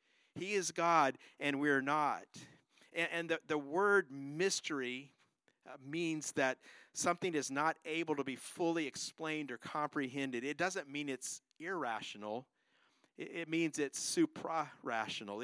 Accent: American